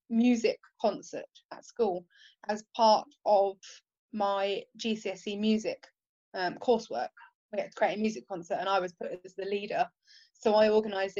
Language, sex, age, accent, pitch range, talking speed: English, female, 20-39, British, 195-230 Hz, 155 wpm